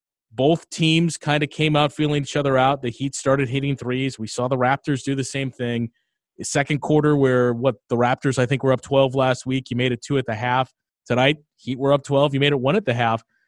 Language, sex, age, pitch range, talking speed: English, male, 30-49, 125-150 Hz, 250 wpm